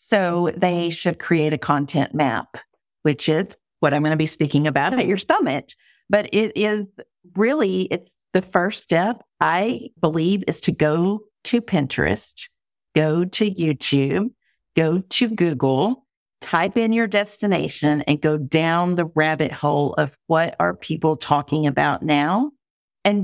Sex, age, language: female, 50-69, English